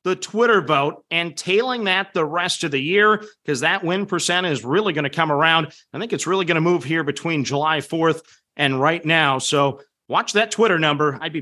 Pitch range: 160-215 Hz